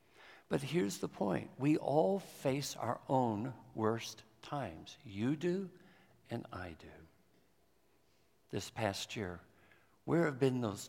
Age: 60-79